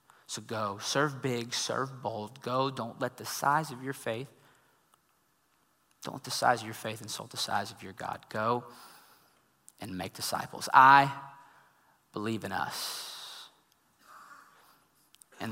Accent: American